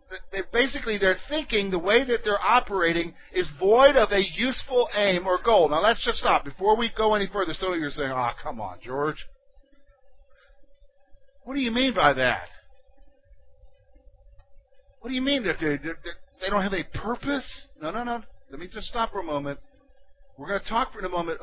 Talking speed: 195 wpm